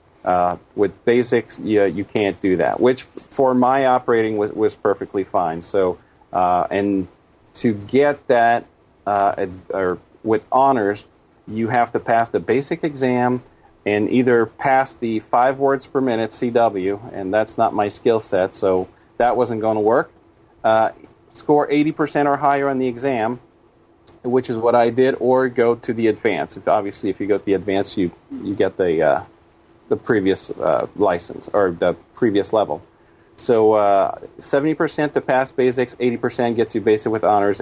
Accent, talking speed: American, 170 wpm